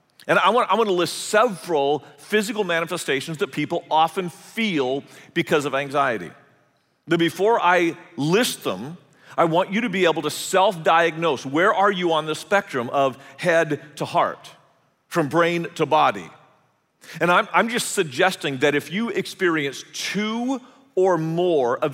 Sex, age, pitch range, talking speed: male, 40-59, 145-190 Hz, 155 wpm